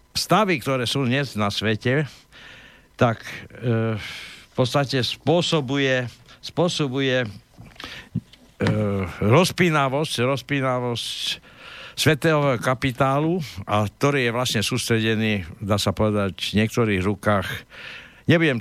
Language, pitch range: Slovak, 105-140 Hz